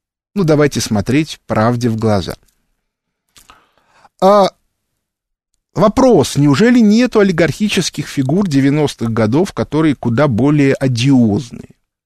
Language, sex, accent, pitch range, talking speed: Russian, male, native, 115-185 Hz, 90 wpm